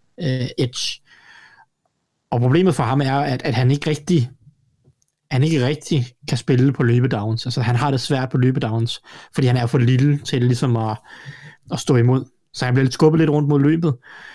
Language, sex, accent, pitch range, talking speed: Danish, male, native, 120-145 Hz, 195 wpm